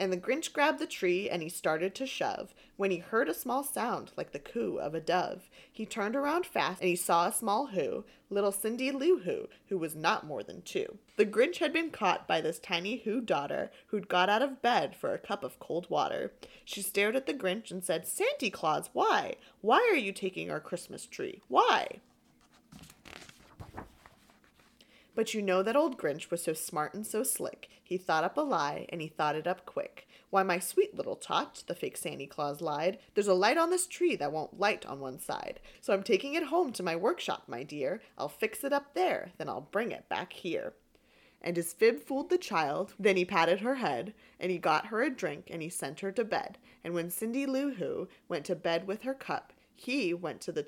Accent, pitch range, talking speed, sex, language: American, 180-290 Hz, 220 wpm, female, English